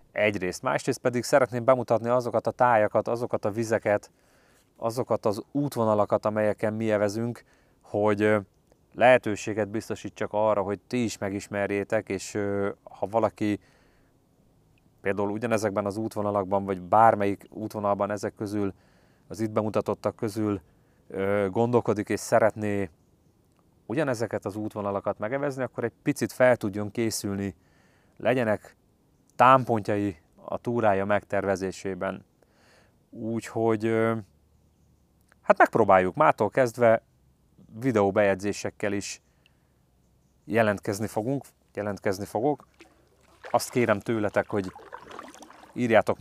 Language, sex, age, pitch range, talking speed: Hungarian, male, 30-49, 100-115 Hz, 95 wpm